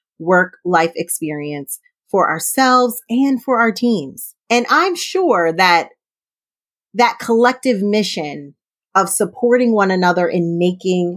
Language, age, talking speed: English, 30-49, 120 wpm